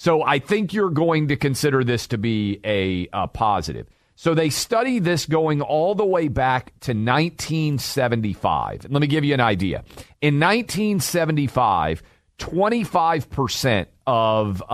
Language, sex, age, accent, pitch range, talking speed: English, male, 40-59, American, 115-160 Hz, 130 wpm